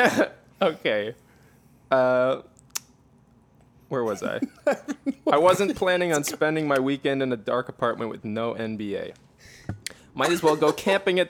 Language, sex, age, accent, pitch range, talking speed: English, male, 20-39, American, 110-140 Hz, 135 wpm